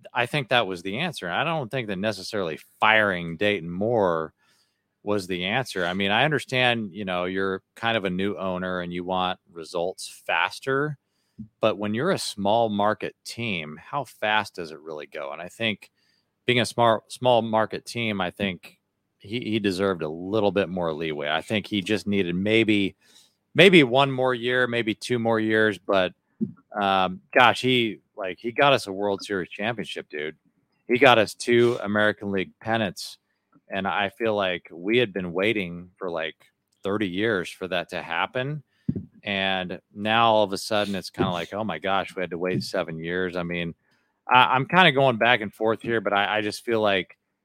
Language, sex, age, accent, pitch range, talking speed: English, male, 40-59, American, 95-115 Hz, 190 wpm